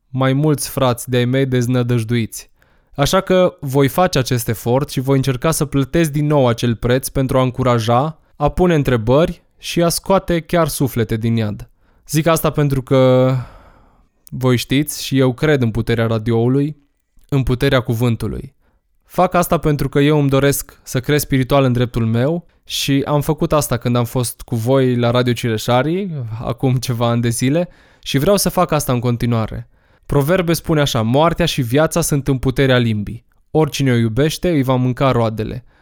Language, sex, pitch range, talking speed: Romanian, male, 120-150 Hz, 175 wpm